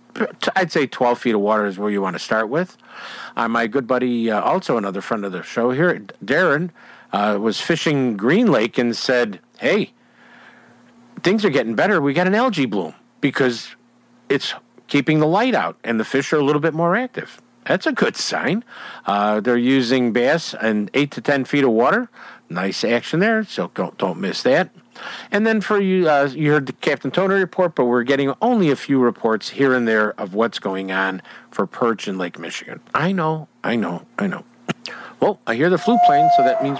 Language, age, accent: English, 50-69, American